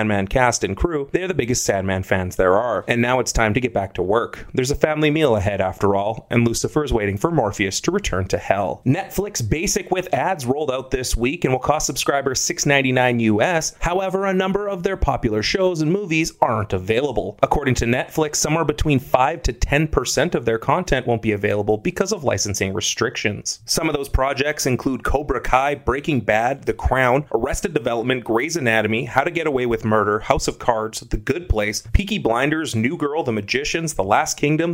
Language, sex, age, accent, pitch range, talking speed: English, male, 30-49, American, 110-155 Hz, 195 wpm